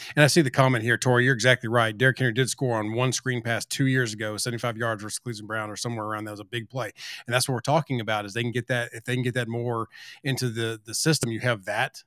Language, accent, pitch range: English, American, 115-140 Hz